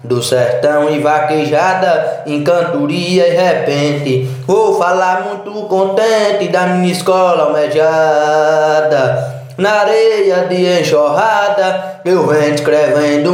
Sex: male